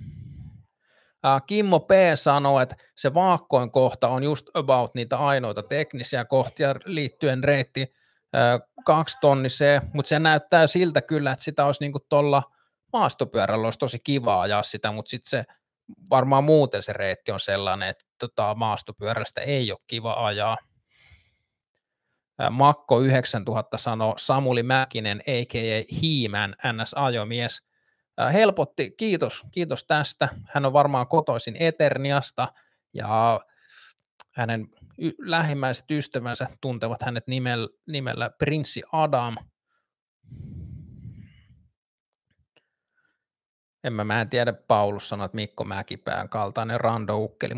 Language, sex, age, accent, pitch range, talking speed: Finnish, male, 20-39, native, 115-145 Hz, 115 wpm